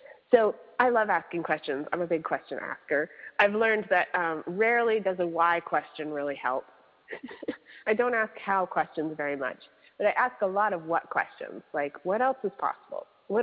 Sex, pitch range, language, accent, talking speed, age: female, 165-230 Hz, English, American, 190 wpm, 30-49